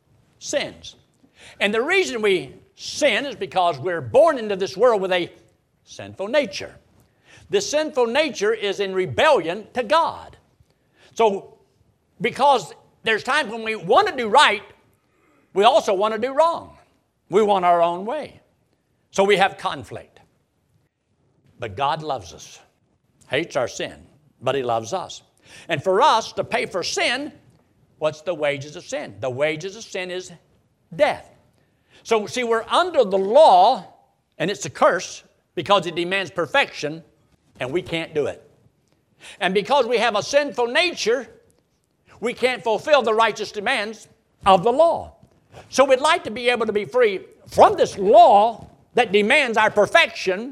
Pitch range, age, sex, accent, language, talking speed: 180-280 Hz, 60-79, male, American, English, 155 wpm